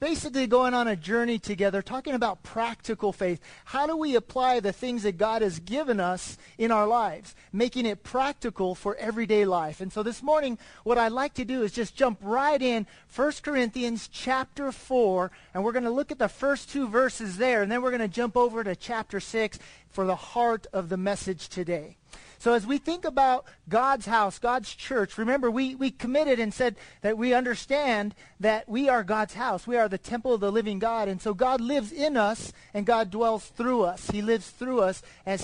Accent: American